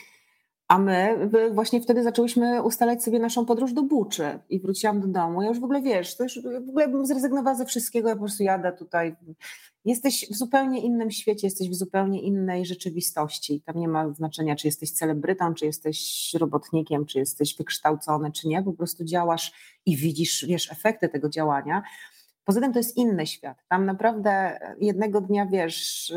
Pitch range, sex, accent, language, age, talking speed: 175-220 Hz, female, native, Polish, 30-49, 180 wpm